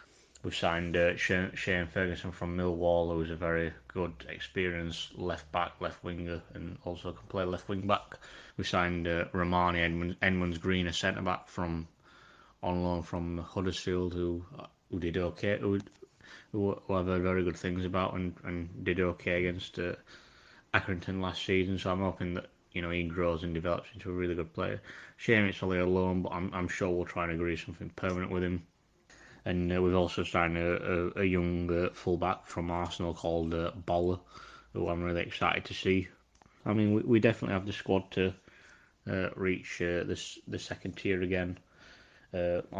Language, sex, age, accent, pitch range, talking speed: English, male, 20-39, British, 85-95 Hz, 180 wpm